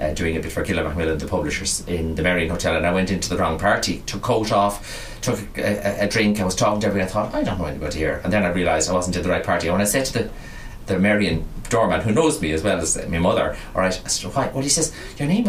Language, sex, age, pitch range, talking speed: English, male, 30-49, 85-105 Hz, 300 wpm